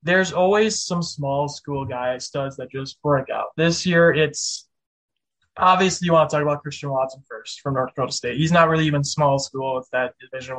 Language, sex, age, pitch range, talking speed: English, male, 20-39, 135-165 Hz, 210 wpm